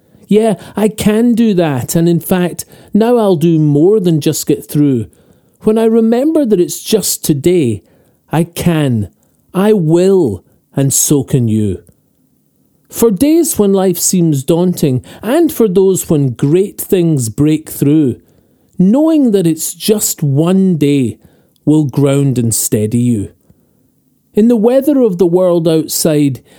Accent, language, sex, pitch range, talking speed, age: British, English, male, 145-200 Hz, 140 wpm, 40-59